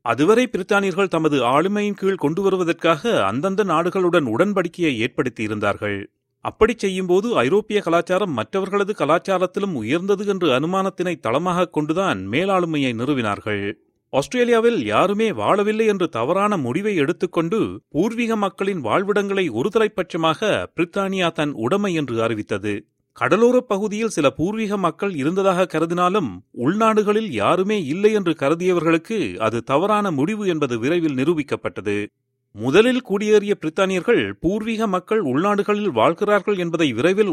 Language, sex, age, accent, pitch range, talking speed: Tamil, male, 40-59, native, 145-205 Hz, 110 wpm